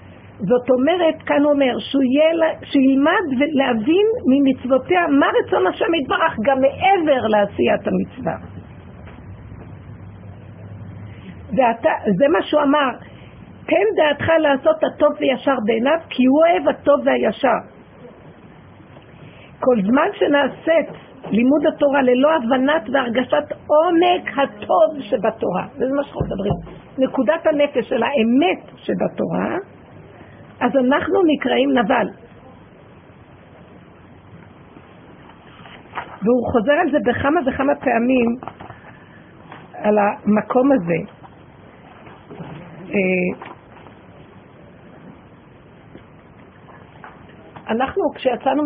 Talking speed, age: 85 wpm, 50-69